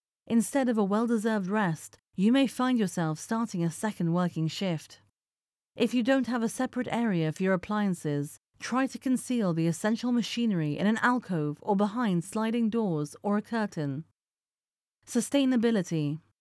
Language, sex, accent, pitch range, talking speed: English, female, British, 170-235 Hz, 150 wpm